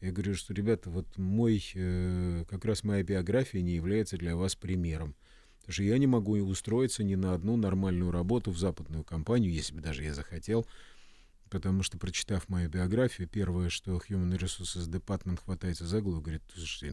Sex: male